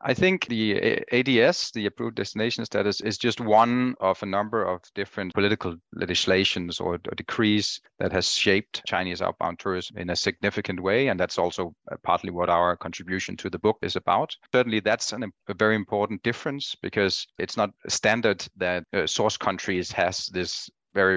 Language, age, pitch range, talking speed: English, 30-49, 90-110 Hz, 165 wpm